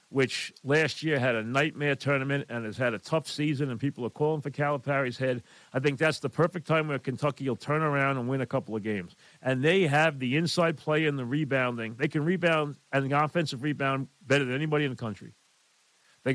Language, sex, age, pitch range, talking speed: English, male, 40-59, 130-155 Hz, 220 wpm